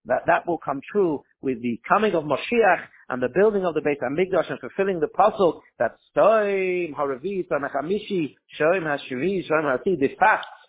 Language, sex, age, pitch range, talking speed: English, male, 50-69, 140-185 Hz, 135 wpm